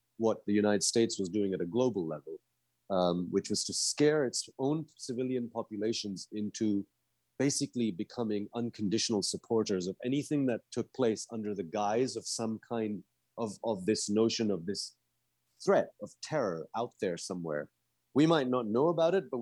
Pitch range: 90-120 Hz